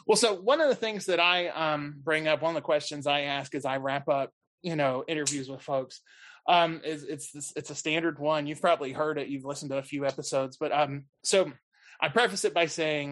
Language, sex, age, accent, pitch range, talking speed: English, male, 20-39, American, 140-170 Hz, 235 wpm